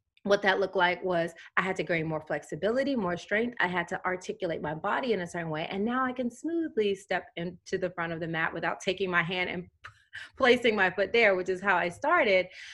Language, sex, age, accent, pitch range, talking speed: English, female, 20-39, American, 185-245 Hz, 230 wpm